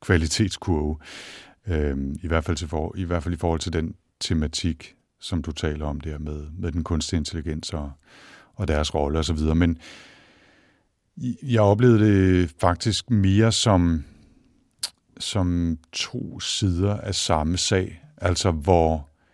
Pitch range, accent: 80-95 Hz, native